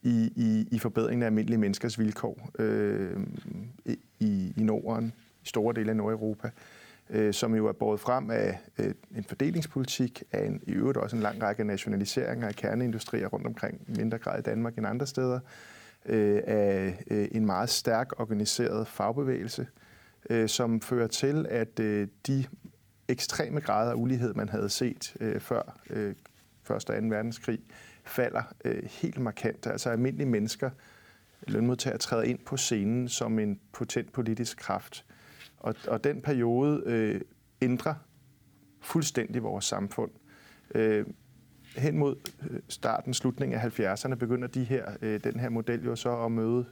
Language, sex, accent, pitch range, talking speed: Danish, male, native, 110-125 Hz, 155 wpm